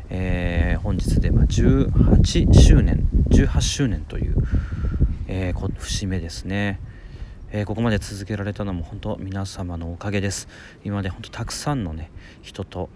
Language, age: Japanese, 40-59